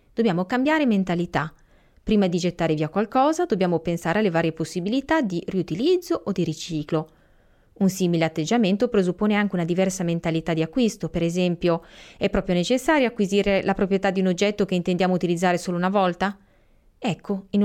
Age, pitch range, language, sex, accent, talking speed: 30-49, 165-230 Hz, Italian, female, native, 160 wpm